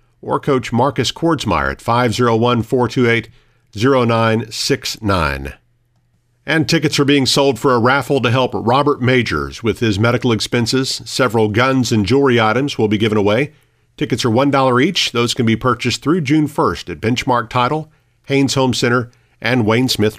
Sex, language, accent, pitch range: male, English, American, 115-145 Hz